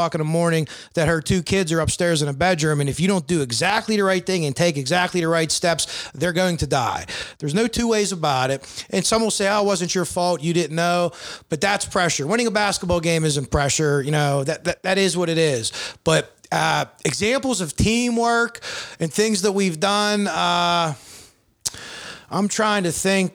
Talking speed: 210 wpm